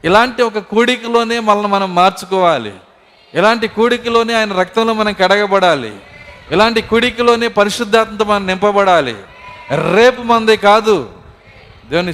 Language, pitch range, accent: Telugu, 145-205 Hz, native